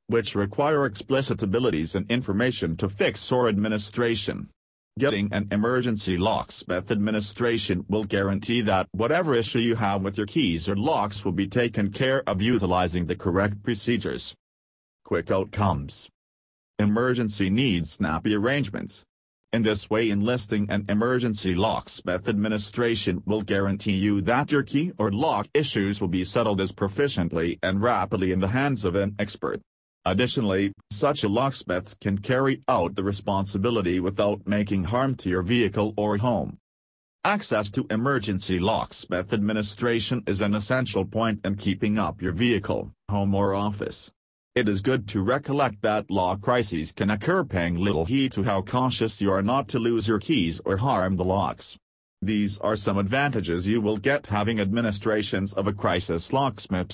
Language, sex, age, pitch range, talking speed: English, male, 40-59, 95-120 Hz, 155 wpm